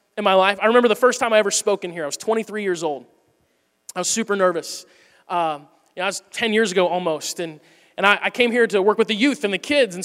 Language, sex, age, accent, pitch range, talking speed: English, male, 20-39, American, 185-245 Hz, 275 wpm